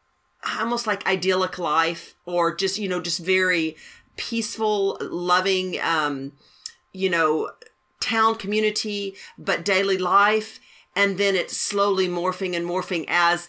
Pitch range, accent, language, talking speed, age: 175-215 Hz, American, English, 125 wpm, 50-69